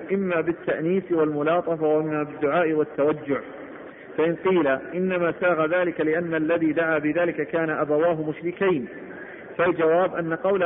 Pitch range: 160-185 Hz